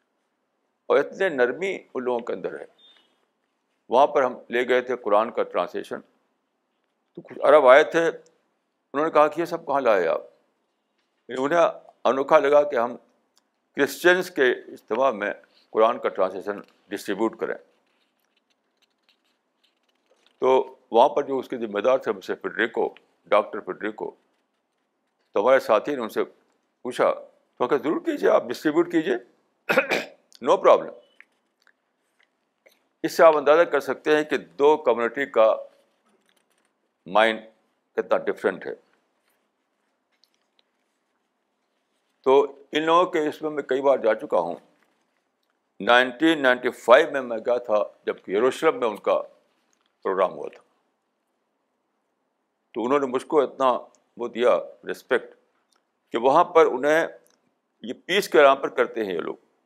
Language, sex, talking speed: Urdu, male, 140 wpm